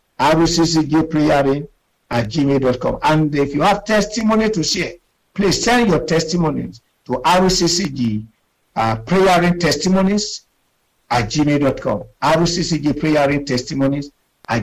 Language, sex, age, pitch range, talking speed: English, male, 50-69, 125-170 Hz, 125 wpm